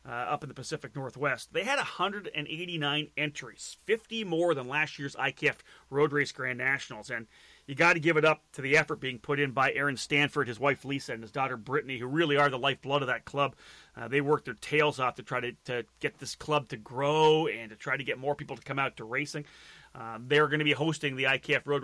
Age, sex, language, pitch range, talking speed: 30-49, male, English, 135-160 Hz, 240 wpm